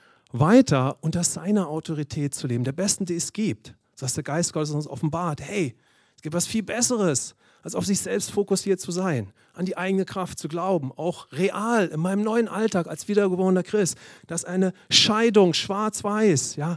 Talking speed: 175 wpm